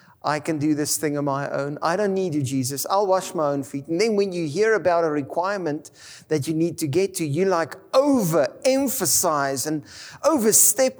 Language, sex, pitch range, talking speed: English, male, 140-190 Hz, 200 wpm